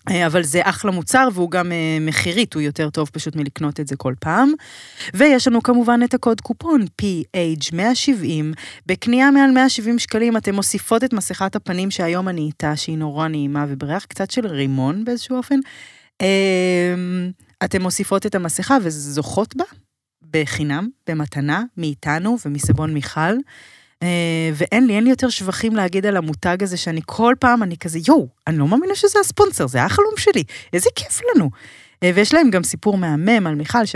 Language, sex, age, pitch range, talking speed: Hebrew, female, 20-39, 155-230 Hz, 140 wpm